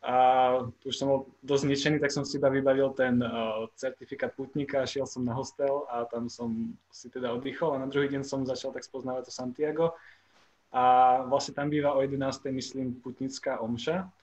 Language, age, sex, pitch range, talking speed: Slovak, 20-39, male, 130-145 Hz, 185 wpm